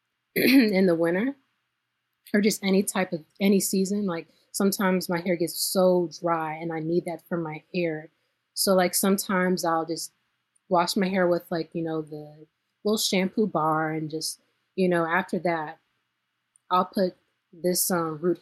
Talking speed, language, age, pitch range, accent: 165 wpm, English, 20-39, 160-185 Hz, American